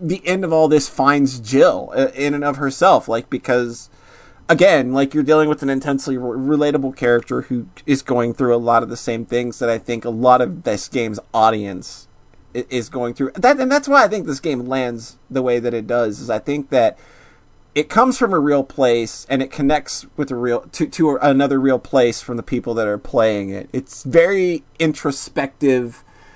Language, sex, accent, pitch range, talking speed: English, male, American, 120-150 Hz, 205 wpm